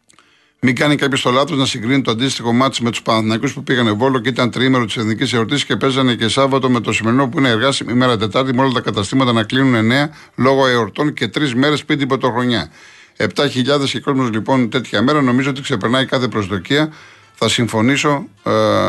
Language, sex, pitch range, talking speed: Greek, male, 120-145 Hz, 205 wpm